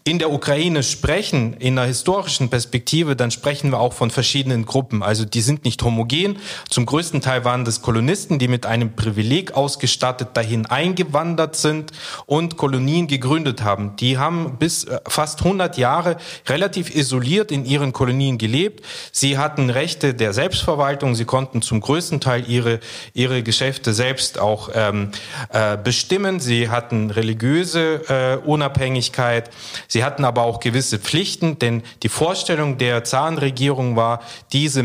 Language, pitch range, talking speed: German, 120-150 Hz, 150 wpm